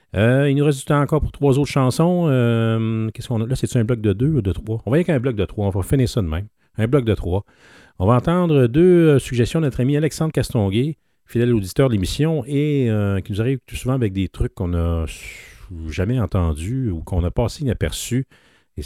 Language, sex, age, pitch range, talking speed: English, male, 40-59, 90-125 Hz, 240 wpm